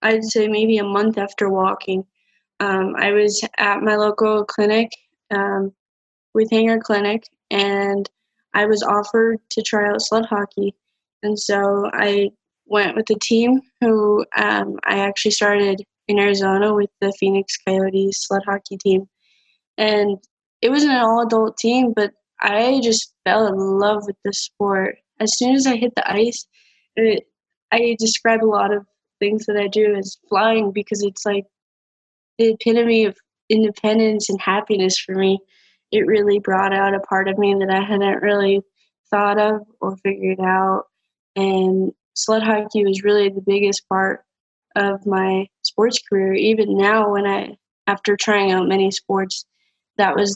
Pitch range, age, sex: 195-215 Hz, 10-29, female